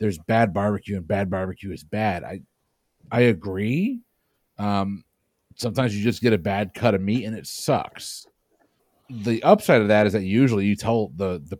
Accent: American